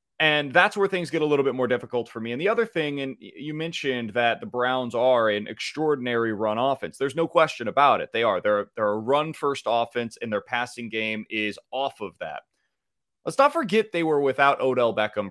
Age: 30-49